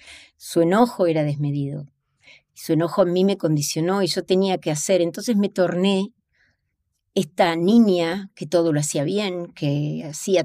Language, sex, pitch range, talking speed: Spanish, female, 150-195 Hz, 155 wpm